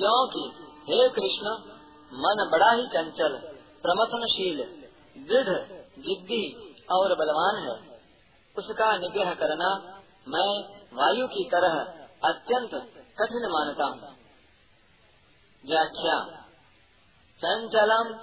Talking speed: 85 wpm